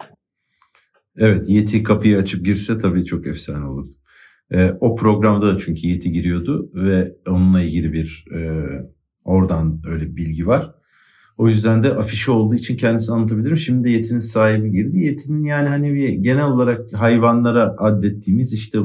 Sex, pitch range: male, 95-115 Hz